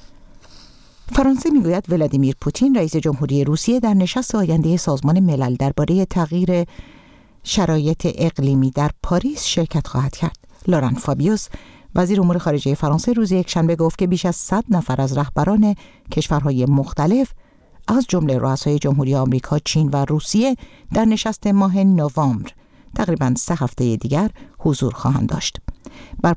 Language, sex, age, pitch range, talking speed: Persian, female, 50-69, 145-185 Hz, 135 wpm